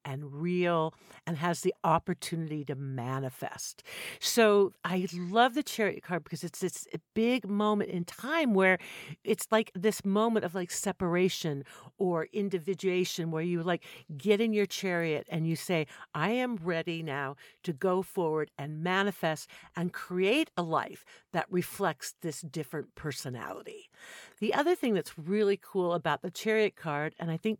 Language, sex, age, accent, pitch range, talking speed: English, female, 60-79, American, 165-210 Hz, 155 wpm